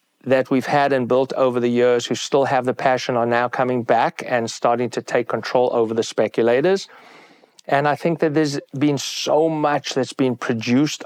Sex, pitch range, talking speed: male, 120-135 Hz, 195 wpm